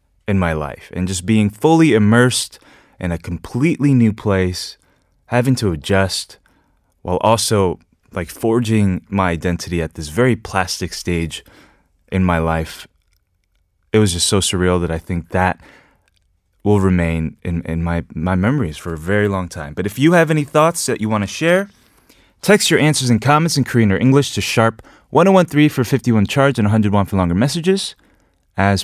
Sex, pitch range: male, 90-125 Hz